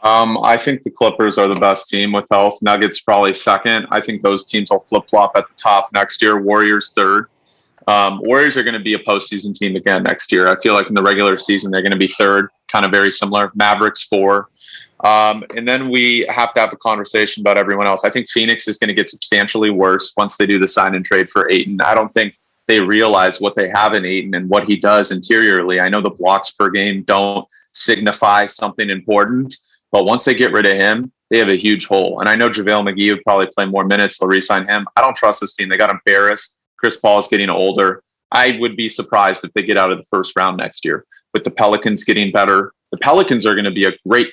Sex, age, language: male, 30-49, English